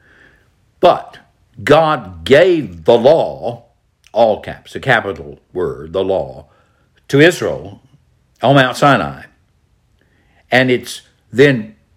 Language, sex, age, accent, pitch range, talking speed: English, male, 60-79, American, 95-135 Hz, 100 wpm